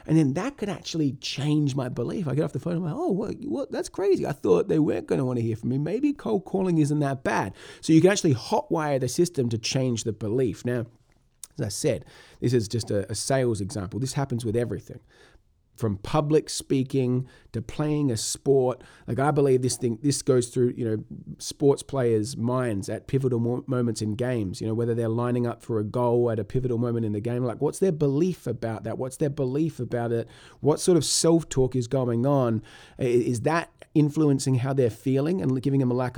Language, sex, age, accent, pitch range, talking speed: English, male, 30-49, Australian, 115-140 Hz, 215 wpm